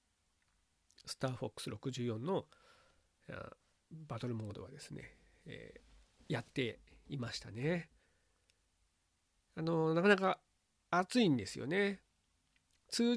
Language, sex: Japanese, male